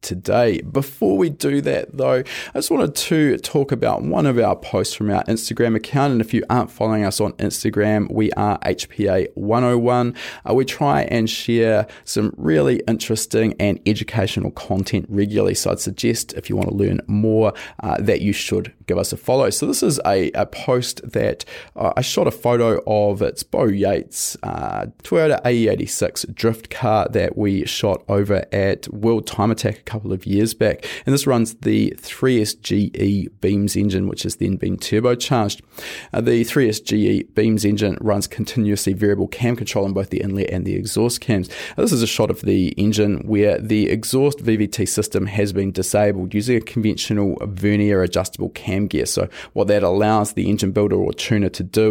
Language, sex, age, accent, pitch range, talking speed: English, male, 20-39, Australian, 100-115 Hz, 180 wpm